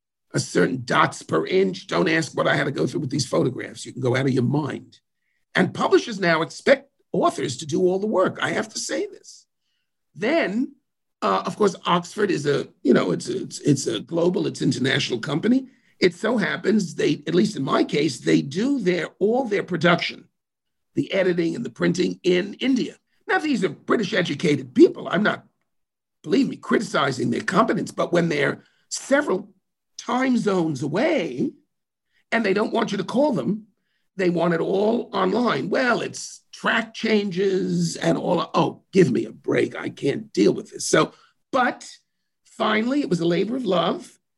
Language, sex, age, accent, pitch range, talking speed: English, male, 50-69, American, 175-240 Hz, 185 wpm